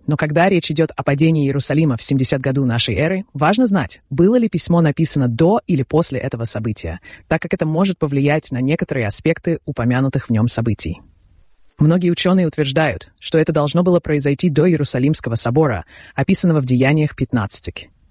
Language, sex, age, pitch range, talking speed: Russian, female, 20-39, 125-165 Hz, 165 wpm